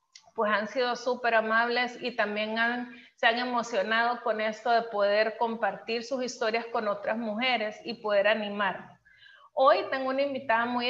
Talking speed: 160 wpm